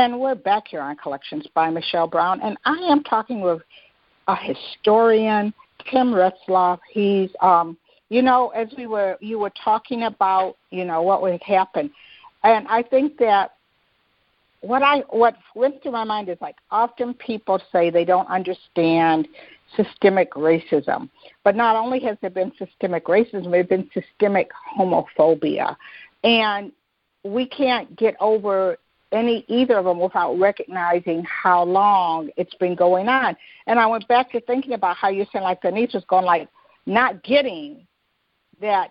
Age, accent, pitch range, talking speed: 60-79, American, 185-245 Hz, 155 wpm